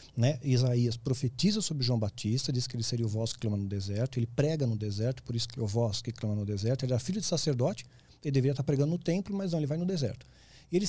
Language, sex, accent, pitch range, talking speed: Portuguese, male, Brazilian, 120-165 Hz, 260 wpm